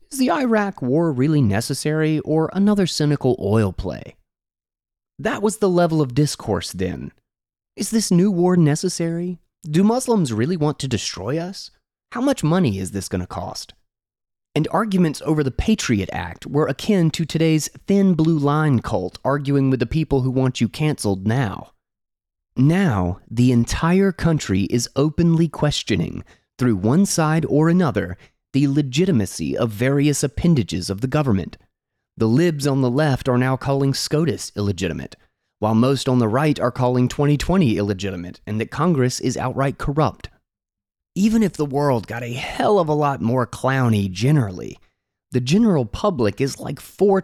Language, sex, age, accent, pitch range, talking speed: English, male, 30-49, American, 115-165 Hz, 160 wpm